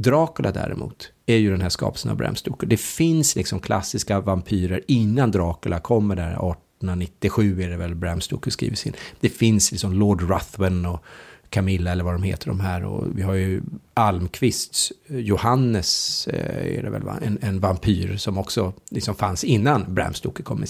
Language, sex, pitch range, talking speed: English, male, 95-120 Hz, 175 wpm